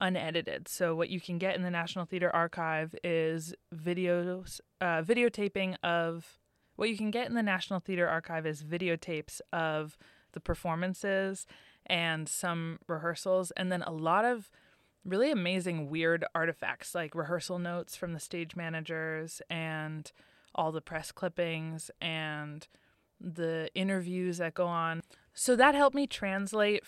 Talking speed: 145 wpm